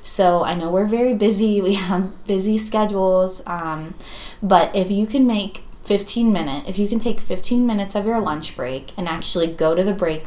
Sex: female